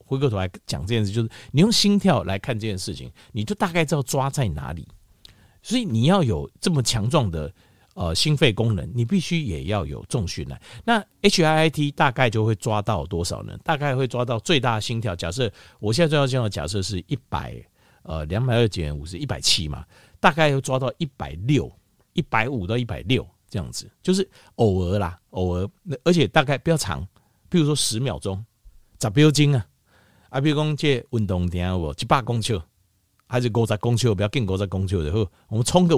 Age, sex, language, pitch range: 50-69, male, Chinese, 95-135 Hz